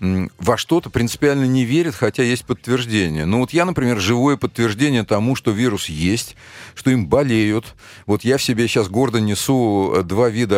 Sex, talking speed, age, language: male, 170 wpm, 40-59, Russian